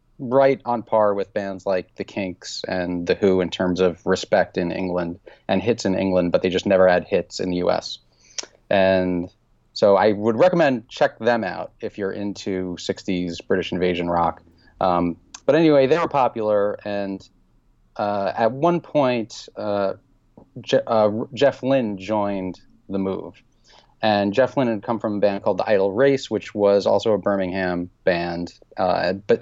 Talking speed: 175 wpm